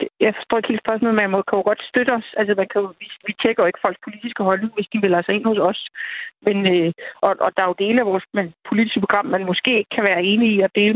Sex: female